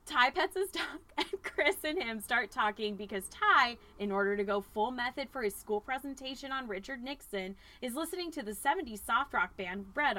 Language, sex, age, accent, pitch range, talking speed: English, female, 10-29, American, 205-280 Hz, 200 wpm